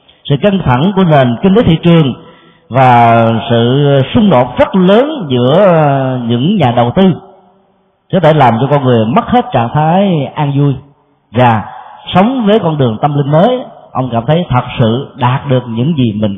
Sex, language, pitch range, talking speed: male, Vietnamese, 120-175 Hz, 185 wpm